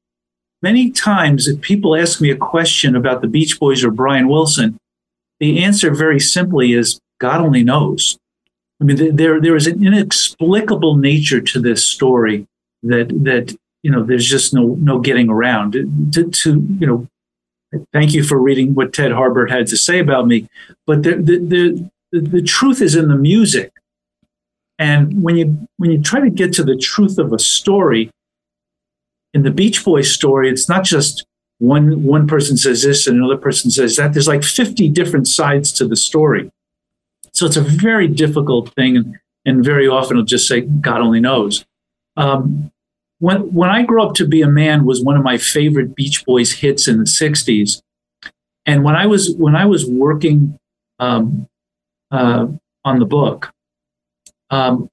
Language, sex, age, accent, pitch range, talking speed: English, male, 50-69, American, 120-165 Hz, 175 wpm